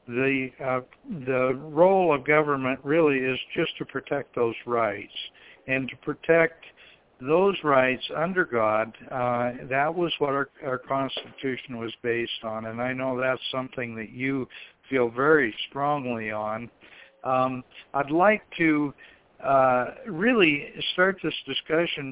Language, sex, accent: English, male, American